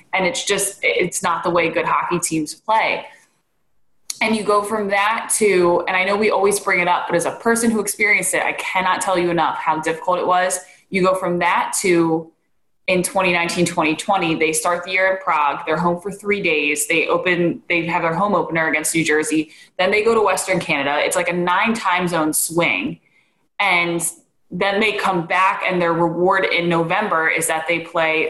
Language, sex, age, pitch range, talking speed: English, female, 20-39, 165-195 Hz, 205 wpm